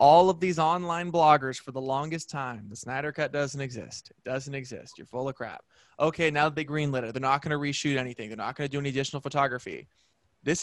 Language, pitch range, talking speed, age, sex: English, 125-160 Hz, 230 wpm, 20-39, male